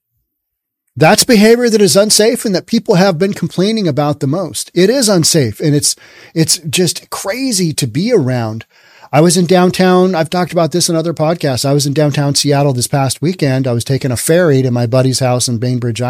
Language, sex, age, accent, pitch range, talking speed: English, male, 40-59, American, 125-170 Hz, 205 wpm